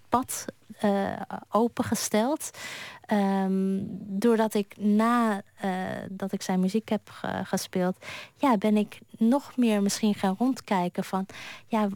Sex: female